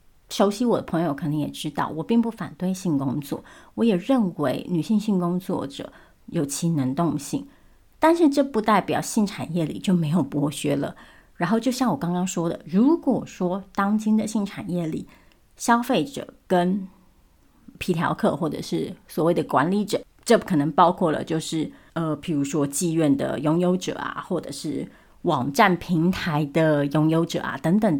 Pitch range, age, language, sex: 165-235 Hz, 30-49, Chinese, female